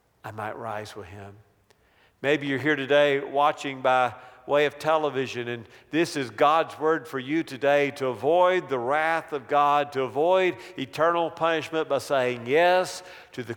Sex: male